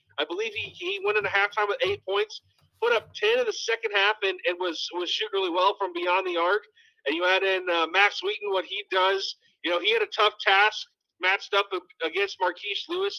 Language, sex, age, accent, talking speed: English, male, 40-59, American, 230 wpm